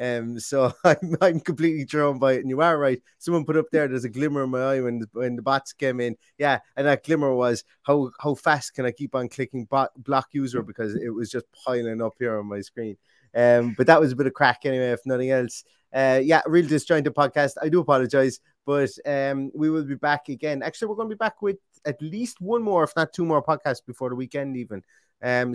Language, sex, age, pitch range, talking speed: English, male, 20-39, 120-140 Hz, 240 wpm